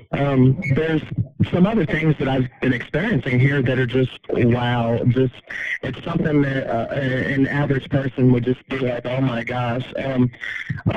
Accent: American